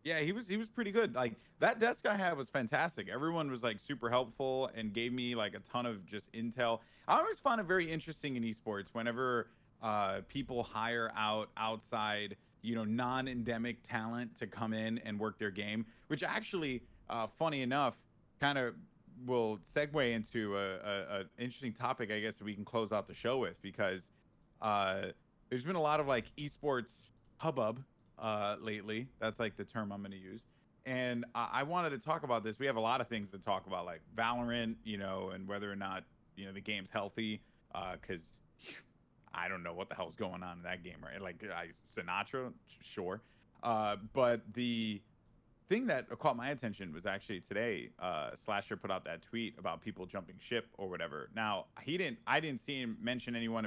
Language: English